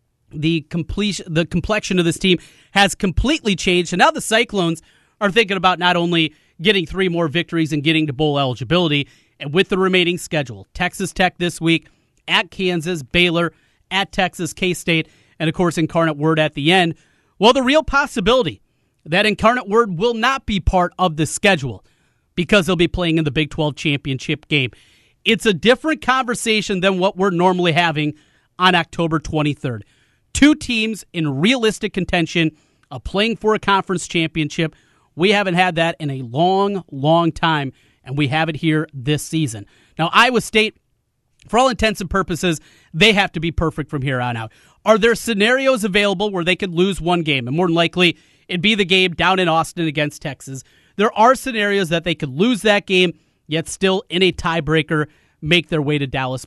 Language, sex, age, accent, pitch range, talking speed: English, male, 30-49, American, 155-200 Hz, 185 wpm